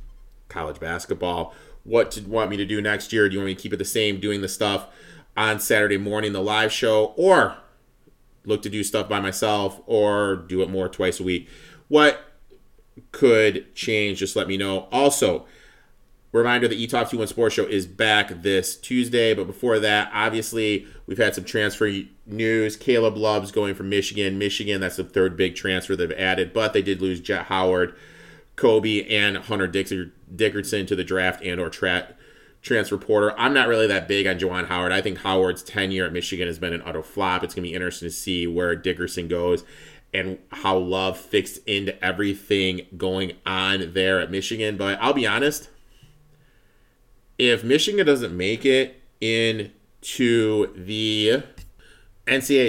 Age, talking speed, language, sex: 30-49, 175 wpm, English, male